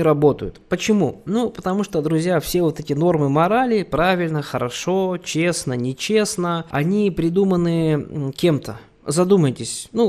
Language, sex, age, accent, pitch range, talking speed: Russian, male, 20-39, native, 145-190 Hz, 120 wpm